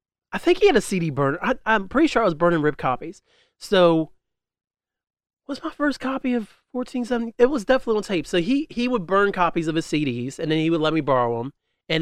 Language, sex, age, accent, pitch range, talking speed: English, male, 30-49, American, 135-190 Hz, 230 wpm